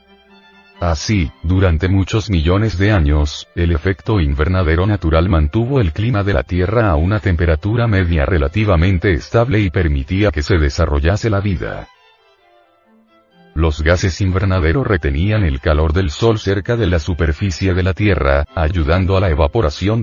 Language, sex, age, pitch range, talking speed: Spanish, male, 40-59, 85-105 Hz, 145 wpm